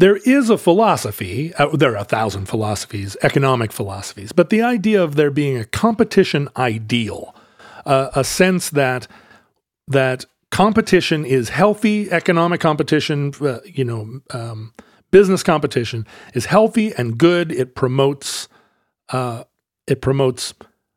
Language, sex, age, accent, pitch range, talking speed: English, male, 40-59, American, 130-180 Hz, 130 wpm